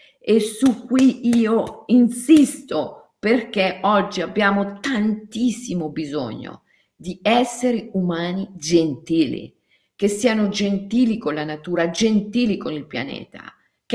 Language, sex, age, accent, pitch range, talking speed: Italian, female, 50-69, native, 190-270 Hz, 110 wpm